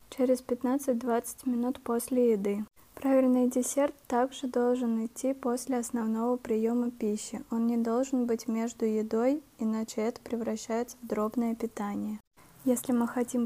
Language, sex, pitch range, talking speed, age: Russian, female, 225-250 Hz, 130 wpm, 20-39